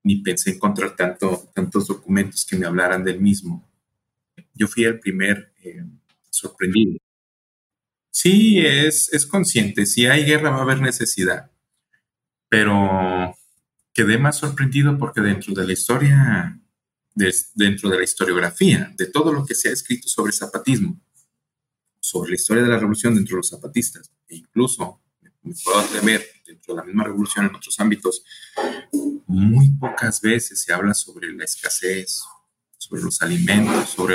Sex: male